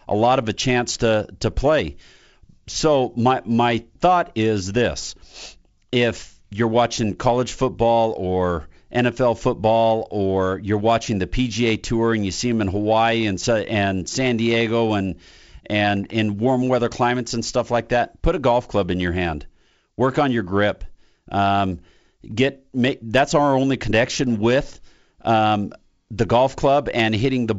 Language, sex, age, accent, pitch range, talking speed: English, male, 50-69, American, 105-120 Hz, 160 wpm